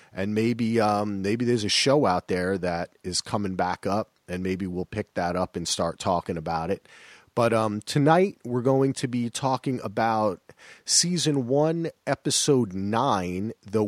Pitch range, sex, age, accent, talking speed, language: 100-150 Hz, male, 40-59, American, 170 wpm, English